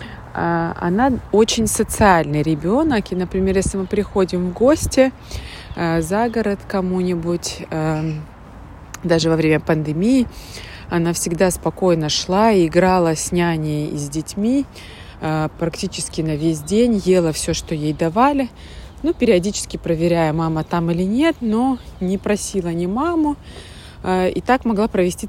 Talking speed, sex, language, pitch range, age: 130 wpm, female, Russian, 165-210 Hz, 20-39